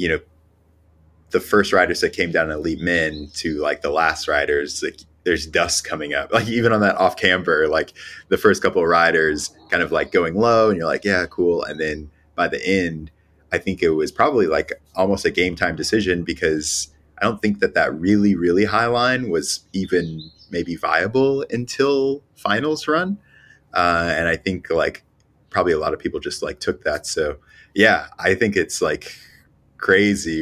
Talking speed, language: 185 wpm, English